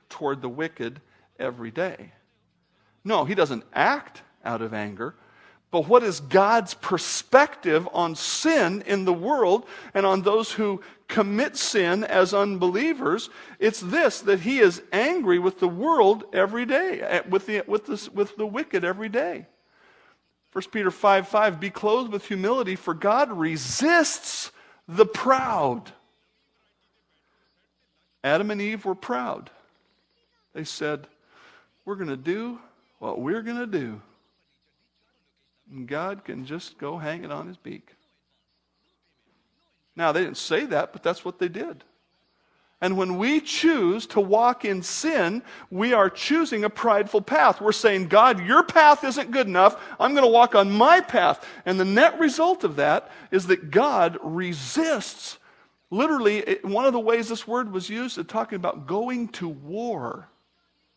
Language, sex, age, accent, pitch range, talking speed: English, male, 50-69, American, 180-260 Hz, 150 wpm